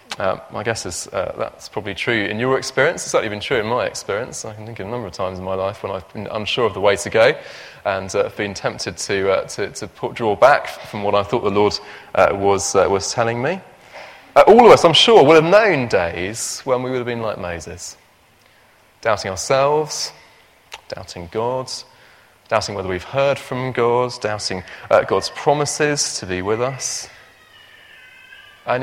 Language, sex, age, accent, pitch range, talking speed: English, male, 30-49, British, 95-125 Hz, 205 wpm